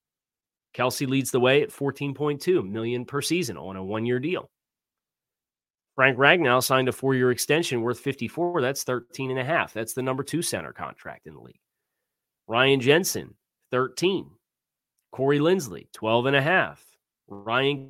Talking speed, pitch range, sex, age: 150 wpm, 110-140 Hz, male, 30-49